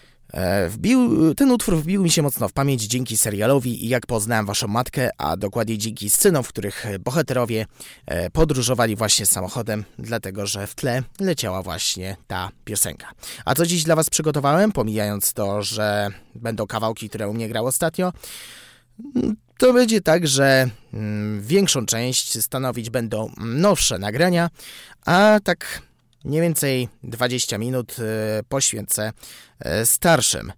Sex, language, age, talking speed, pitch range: male, Polish, 20-39, 135 wpm, 110-160 Hz